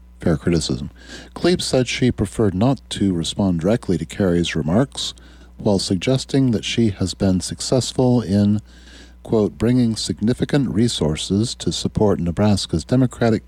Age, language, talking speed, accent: 50-69, English, 130 wpm, American